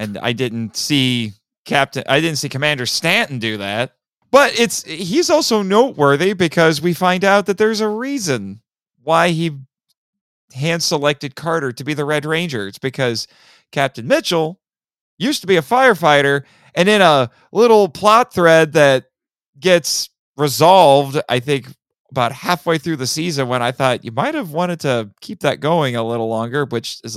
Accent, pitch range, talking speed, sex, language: American, 125-175 Hz, 165 wpm, male, English